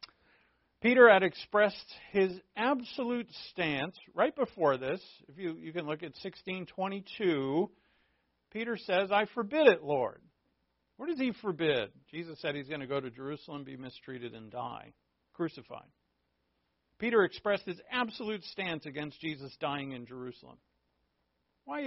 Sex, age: male, 50-69